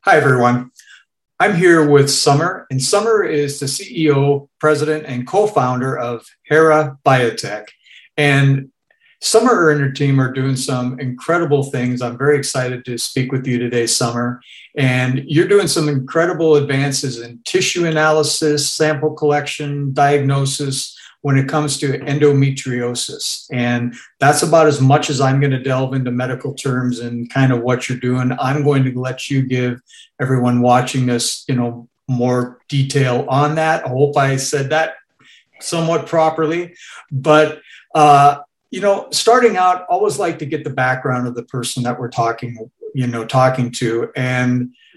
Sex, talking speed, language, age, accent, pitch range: male, 155 wpm, English, 50-69, American, 125-155 Hz